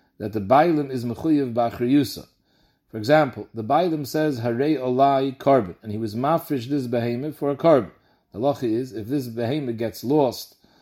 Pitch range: 115-150 Hz